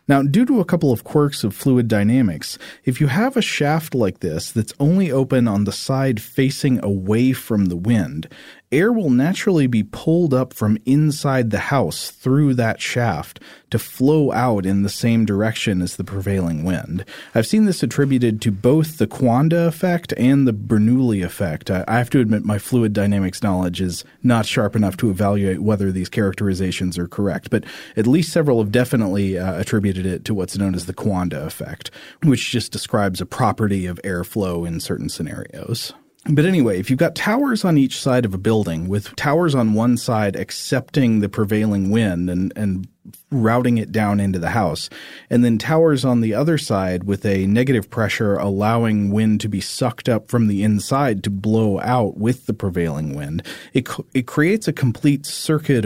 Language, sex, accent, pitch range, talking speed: English, male, American, 100-130 Hz, 185 wpm